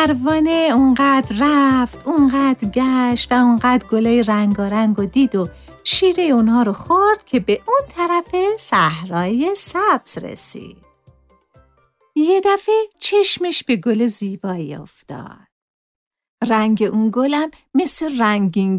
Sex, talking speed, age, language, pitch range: female, 120 wpm, 50-69, Persian, 210-335 Hz